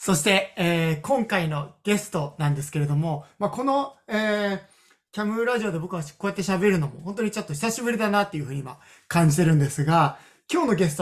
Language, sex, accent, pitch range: Japanese, male, native, 155-210 Hz